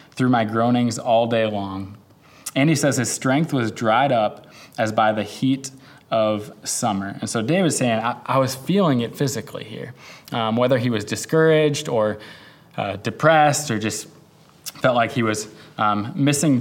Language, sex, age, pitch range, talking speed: English, male, 20-39, 110-140 Hz, 170 wpm